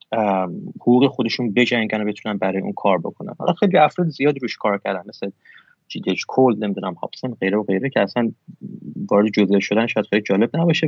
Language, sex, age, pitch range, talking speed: Persian, male, 30-49, 100-145 Hz, 175 wpm